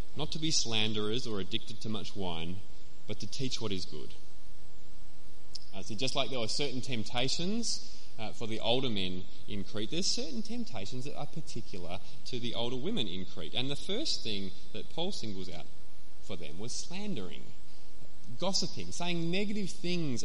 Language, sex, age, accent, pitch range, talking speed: English, male, 20-39, Australian, 90-150 Hz, 170 wpm